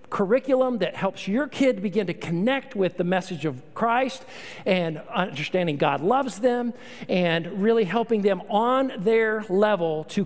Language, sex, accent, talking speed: English, male, American, 150 wpm